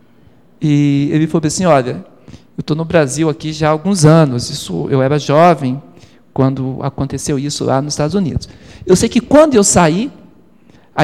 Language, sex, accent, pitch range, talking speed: Portuguese, male, Brazilian, 140-175 Hz, 170 wpm